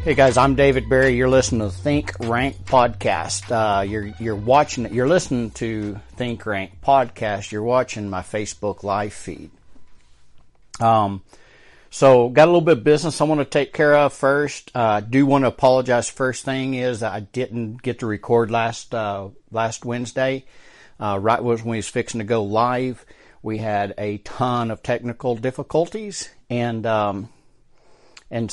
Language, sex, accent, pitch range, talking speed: English, male, American, 110-130 Hz, 170 wpm